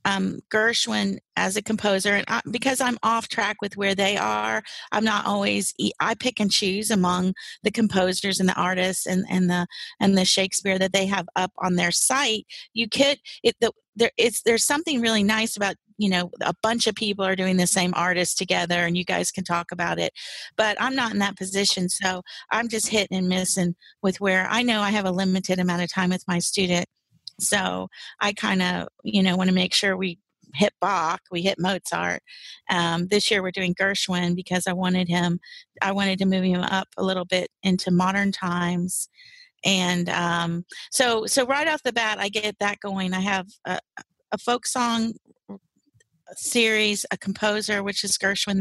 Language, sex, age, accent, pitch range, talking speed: English, female, 40-59, American, 180-210 Hz, 195 wpm